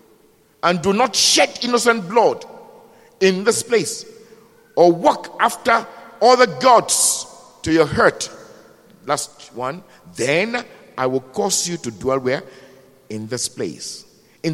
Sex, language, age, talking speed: male, English, 50-69, 130 wpm